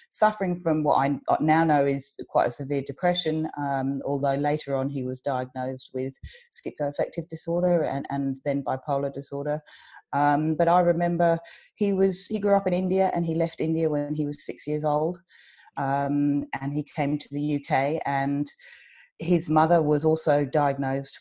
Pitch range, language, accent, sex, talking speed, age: 135-160 Hz, English, British, female, 170 wpm, 30-49